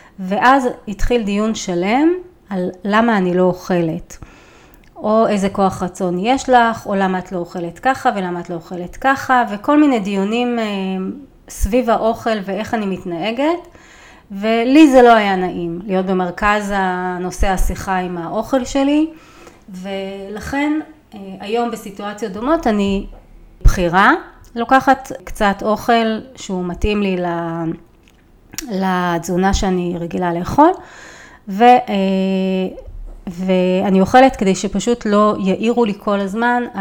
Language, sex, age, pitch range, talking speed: Hebrew, female, 30-49, 185-235 Hz, 120 wpm